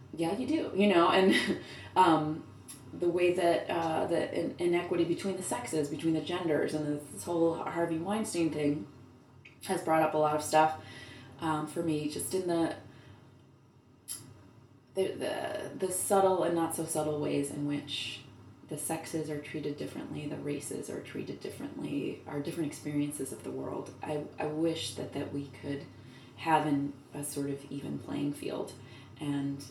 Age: 20-39